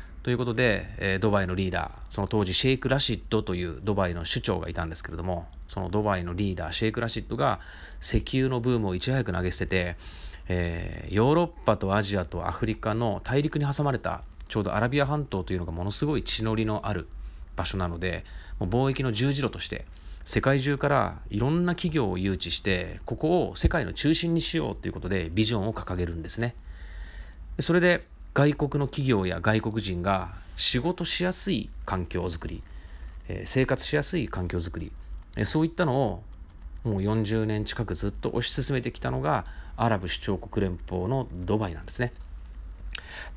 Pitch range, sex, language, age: 85-120 Hz, male, Japanese, 30-49